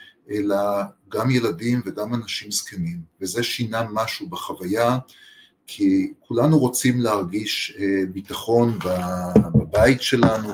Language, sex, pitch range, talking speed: Hebrew, male, 95-125 Hz, 95 wpm